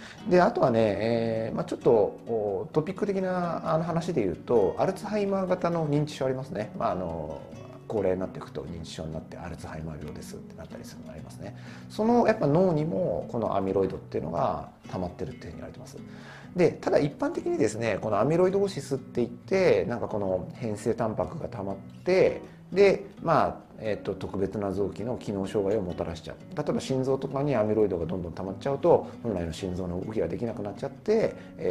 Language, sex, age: Japanese, male, 40-59